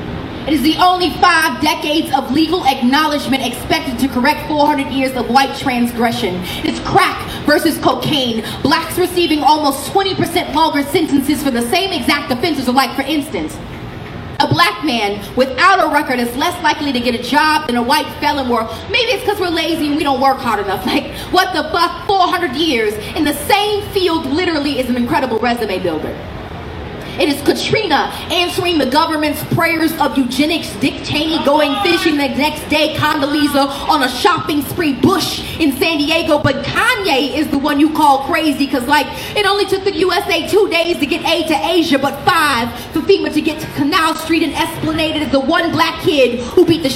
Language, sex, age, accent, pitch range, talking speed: English, female, 20-39, American, 270-330 Hz, 190 wpm